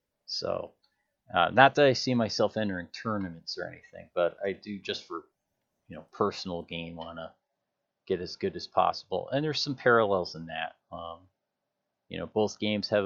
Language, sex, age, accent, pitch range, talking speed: English, male, 30-49, American, 95-110 Hz, 180 wpm